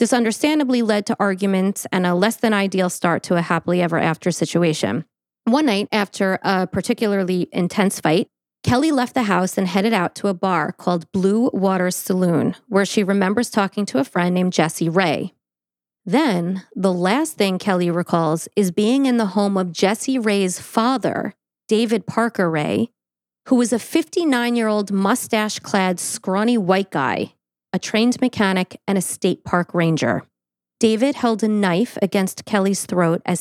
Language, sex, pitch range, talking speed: English, female, 180-220 Hz, 160 wpm